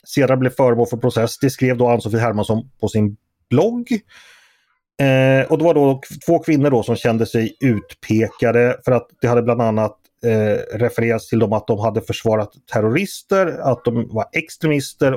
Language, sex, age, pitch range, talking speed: Swedish, male, 30-49, 115-160 Hz, 165 wpm